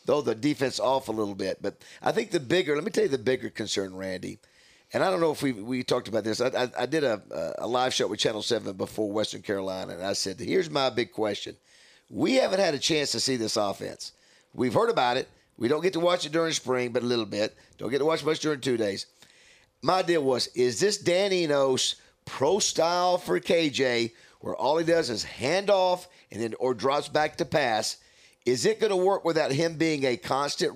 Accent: American